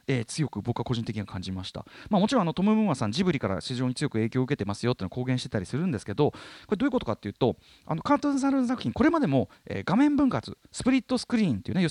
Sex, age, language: male, 30-49, Japanese